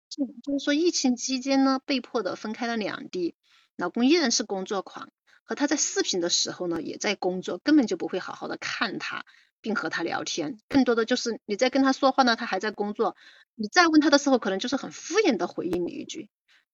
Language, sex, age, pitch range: Chinese, female, 30-49, 210-305 Hz